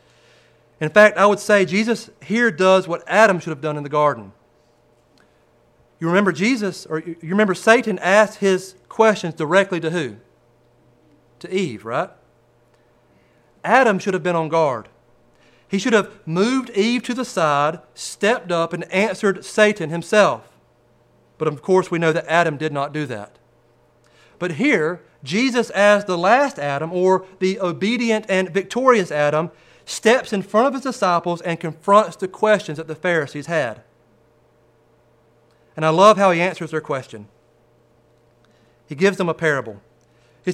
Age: 40-59